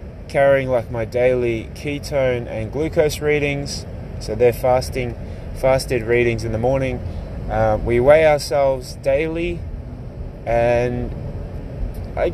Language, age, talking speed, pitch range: English, 20-39, 110 wpm, 100-135 Hz